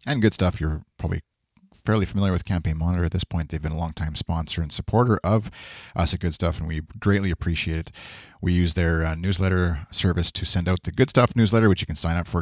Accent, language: American, English